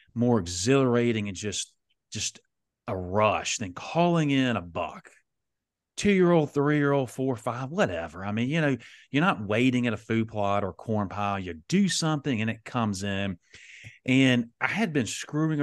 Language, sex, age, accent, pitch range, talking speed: English, male, 30-49, American, 100-125 Hz, 170 wpm